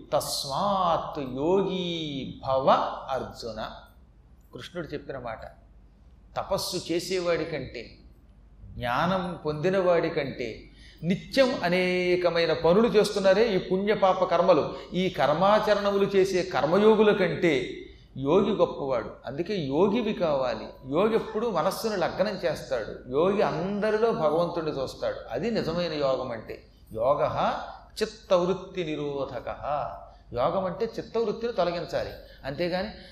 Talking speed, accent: 95 wpm, native